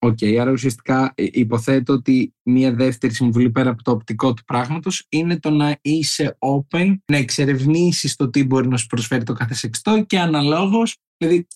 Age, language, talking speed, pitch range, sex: 20-39, Greek, 170 wpm, 125-150 Hz, male